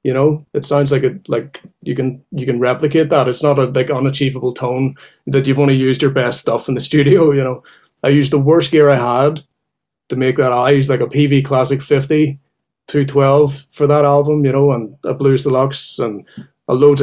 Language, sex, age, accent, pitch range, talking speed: English, male, 20-39, Irish, 130-145 Hz, 220 wpm